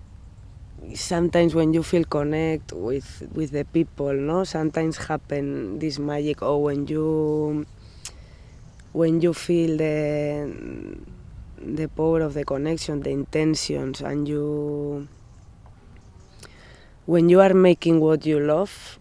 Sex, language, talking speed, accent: female, English, 115 wpm, Spanish